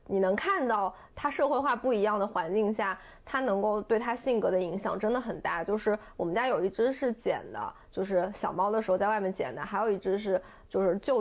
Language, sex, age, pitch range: Chinese, female, 20-39, 190-240 Hz